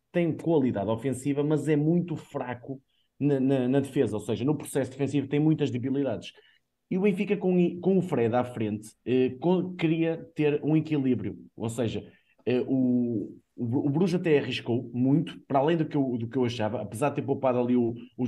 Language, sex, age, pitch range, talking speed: Portuguese, male, 20-39, 115-155 Hz, 195 wpm